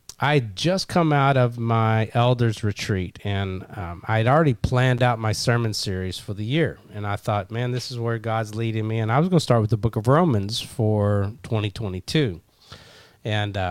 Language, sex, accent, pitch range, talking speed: English, male, American, 105-130 Hz, 190 wpm